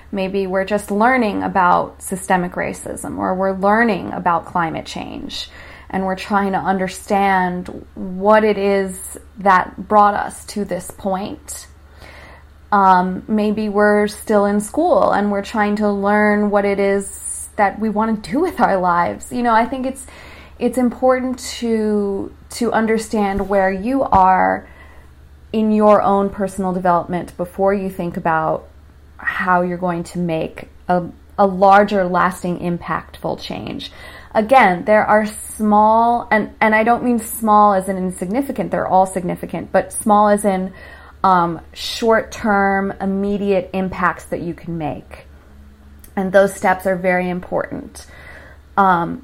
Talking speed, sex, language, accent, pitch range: 145 wpm, female, English, American, 175-210 Hz